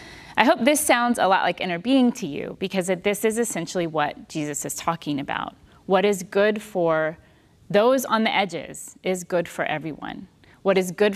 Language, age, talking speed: English, 30-49, 190 wpm